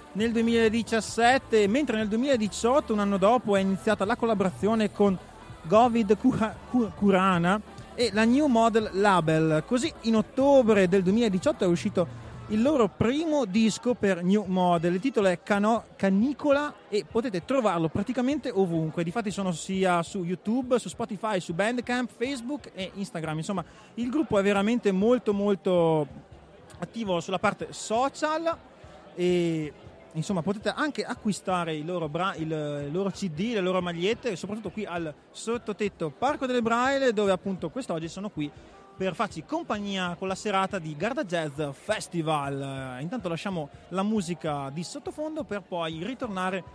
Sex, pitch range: male, 175-230 Hz